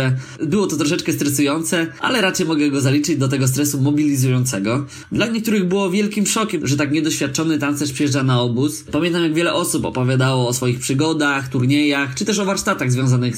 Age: 20-39